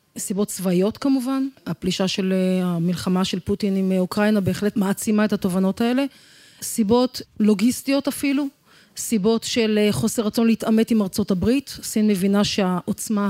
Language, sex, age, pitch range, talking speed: Hebrew, female, 30-49, 195-245 Hz, 130 wpm